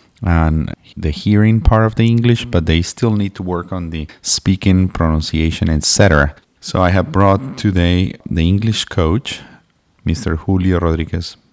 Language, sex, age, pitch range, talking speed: English, male, 30-49, 85-100 Hz, 150 wpm